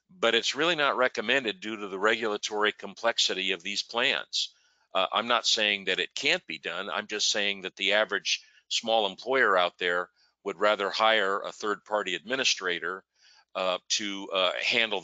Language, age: English, 50-69